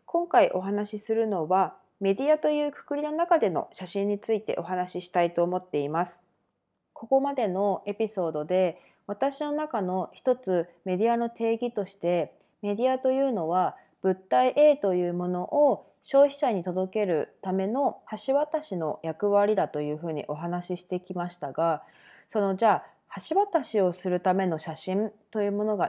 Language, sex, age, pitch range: Japanese, female, 20-39, 180-240 Hz